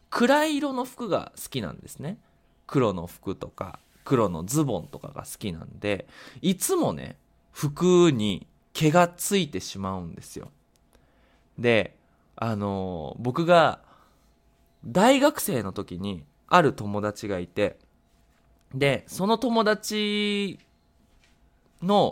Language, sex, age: Japanese, male, 20-39